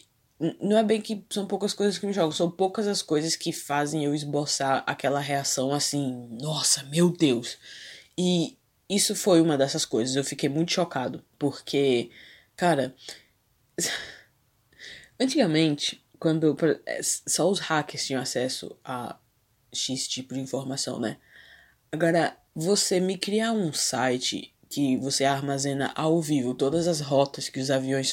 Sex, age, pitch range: female, 20-39, 135-170 Hz